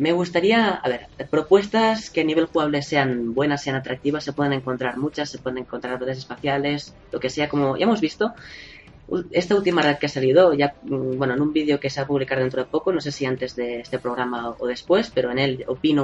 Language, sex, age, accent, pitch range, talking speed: Spanish, female, 20-39, Spanish, 130-165 Hz, 230 wpm